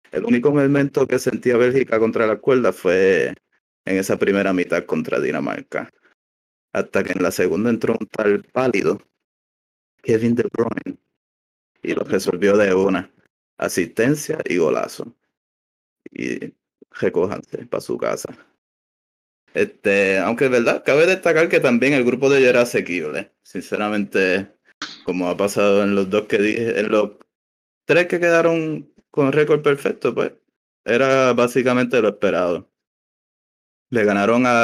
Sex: male